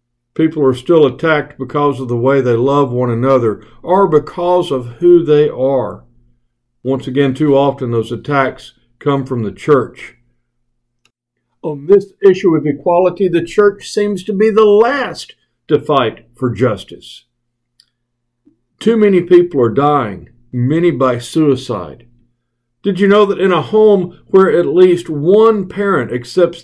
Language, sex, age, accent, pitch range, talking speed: English, male, 60-79, American, 120-170 Hz, 145 wpm